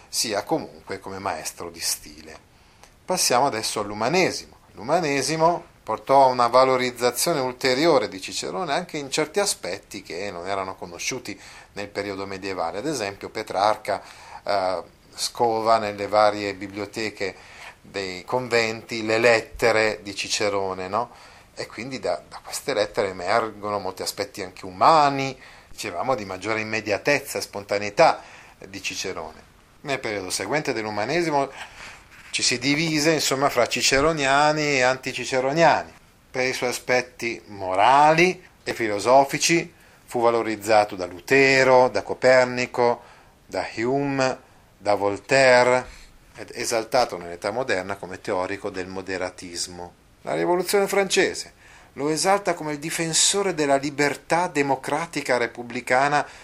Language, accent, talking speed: Italian, native, 115 wpm